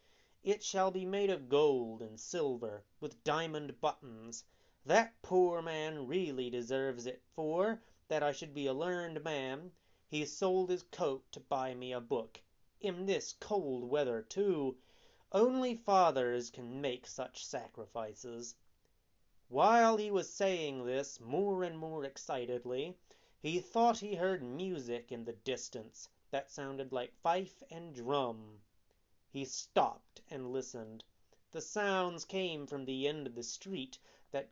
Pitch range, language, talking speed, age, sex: 125-190 Hz, English, 145 wpm, 30-49, male